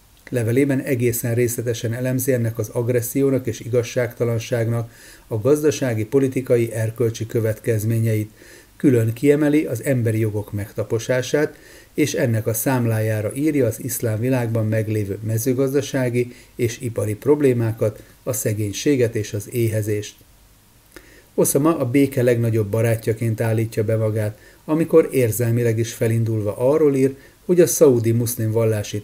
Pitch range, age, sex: 110-130 Hz, 40-59, male